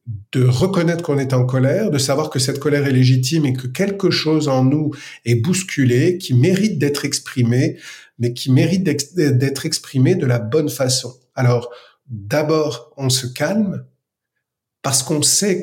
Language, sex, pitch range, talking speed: French, male, 130-165 Hz, 160 wpm